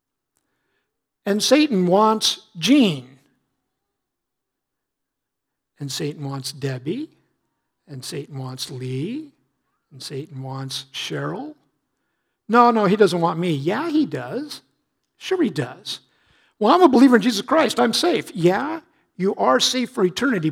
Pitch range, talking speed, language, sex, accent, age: 170-260 Hz, 125 wpm, English, male, American, 60-79